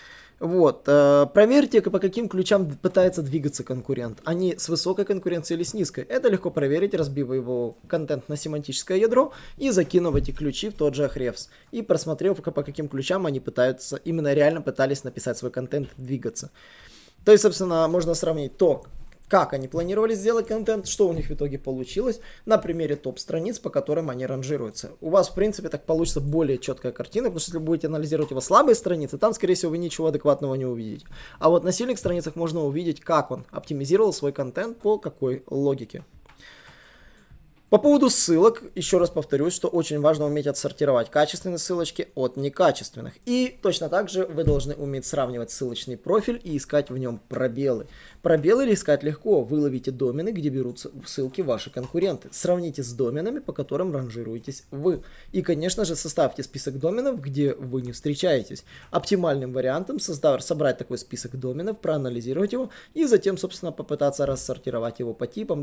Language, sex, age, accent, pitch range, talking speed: Russian, male, 20-39, native, 135-185 Hz, 170 wpm